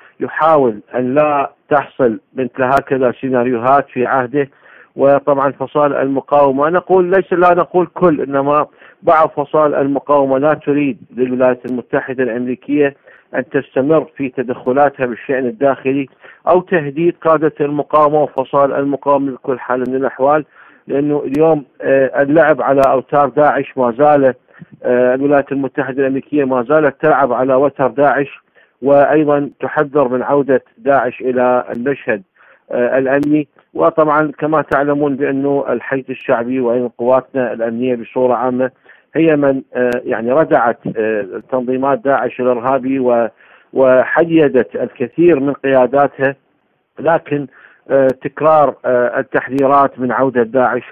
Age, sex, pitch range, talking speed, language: 50-69, male, 130-145 Hz, 110 wpm, Arabic